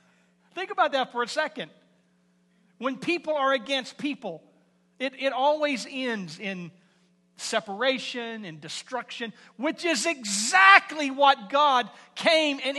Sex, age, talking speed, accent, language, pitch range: male, 40-59, 120 wpm, American, English, 160-255 Hz